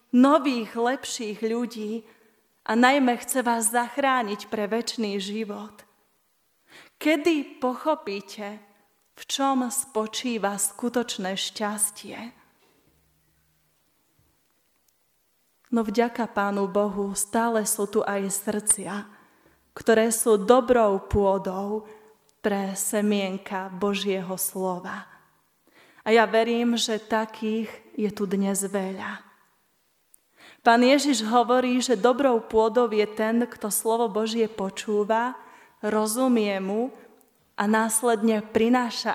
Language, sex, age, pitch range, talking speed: Slovak, female, 30-49, 205-240 Hz, 95 wpm